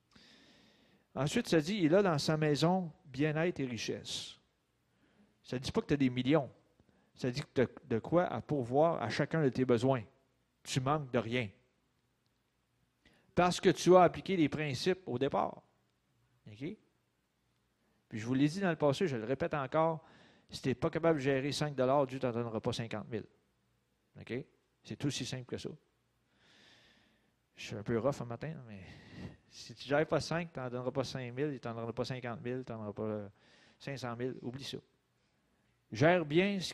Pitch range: 120-155 Hz